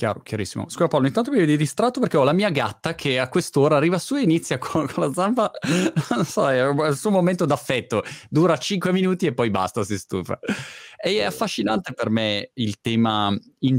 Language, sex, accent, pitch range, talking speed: Italian, male, native, 100-135 Hz, 215 wpm